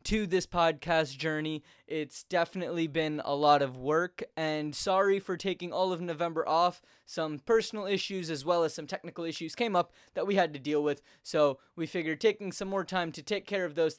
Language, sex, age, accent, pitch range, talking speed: English, male, 10-29, American, 150-180 Hz, 205 wpm